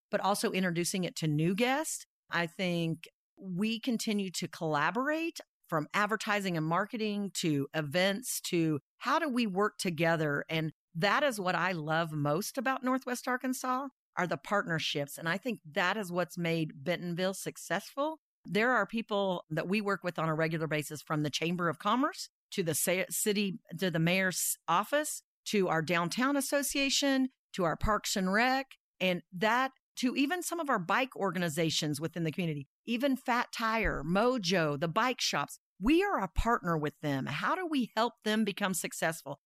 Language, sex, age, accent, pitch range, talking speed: English, female, 50-69, American, 170-240 Hz, 170 wpm